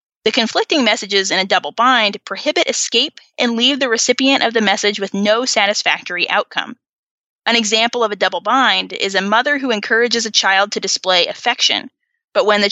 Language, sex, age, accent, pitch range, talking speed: English, female, 20-39, American, 195-255 Hz, 185 wpm